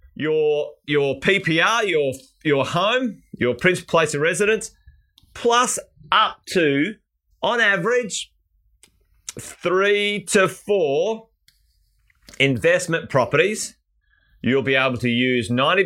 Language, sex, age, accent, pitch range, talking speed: English, male, 30-49, Australian, 115-160 Hz, 100 wpm